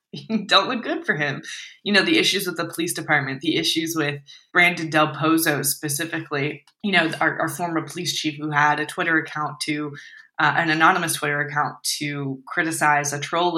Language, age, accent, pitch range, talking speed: English, 20-39, American, 145-170 Hz, 185 wpm